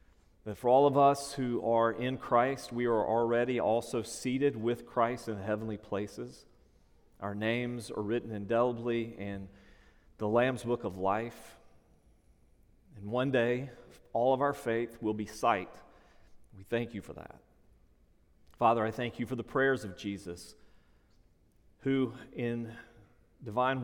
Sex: male